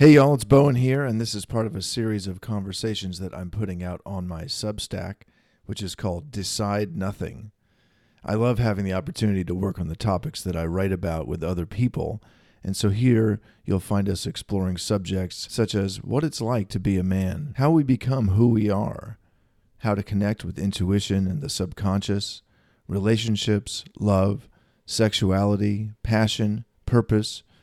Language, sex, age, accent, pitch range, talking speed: English, male, 40-59, American, 95-115 Hz, 170 wpm